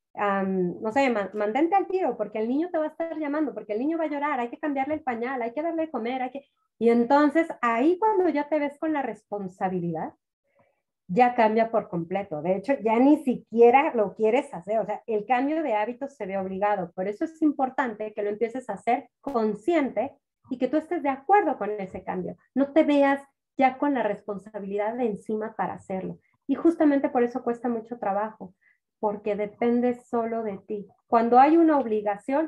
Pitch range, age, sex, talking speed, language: 215-295 Hz, 30-49, female, 200 wpm, Spanish